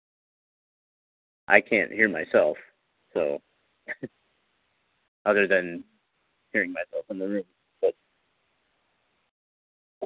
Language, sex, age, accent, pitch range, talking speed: English, male, 50-69, American, 95-140 Hz, 85 wpm